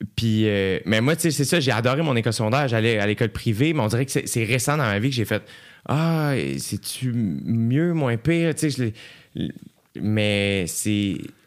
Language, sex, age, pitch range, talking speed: French, male, 30-49, 110-145 Hz, 190 wpm